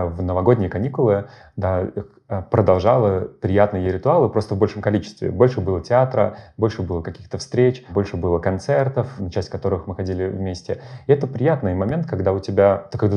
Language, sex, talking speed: Russian, male, 165 wpm